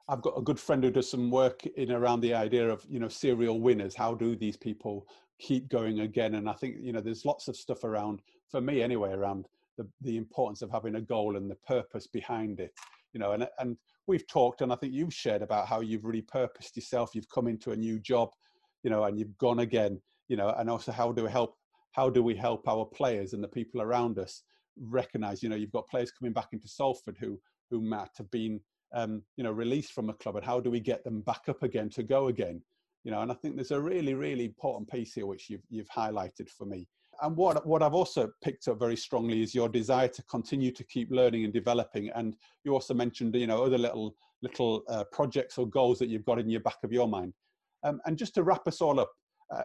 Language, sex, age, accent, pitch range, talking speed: English, male, 50-69, British, 110-130 Hz, 240 wpm